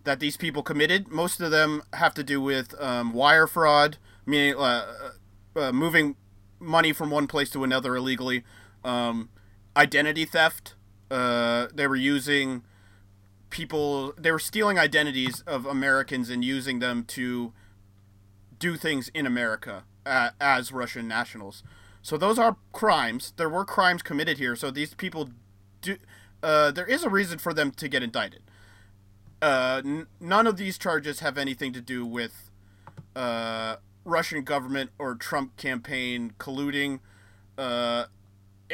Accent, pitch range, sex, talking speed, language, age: American, 100-155 Hz, male, 140 wpm, English, 30-49